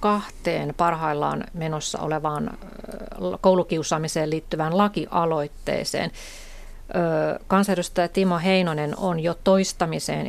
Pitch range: 150-185 Hz